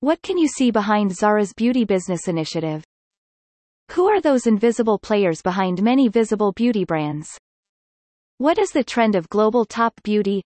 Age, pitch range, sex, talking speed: 30-49, 185-245 Hz, female, 155 wpm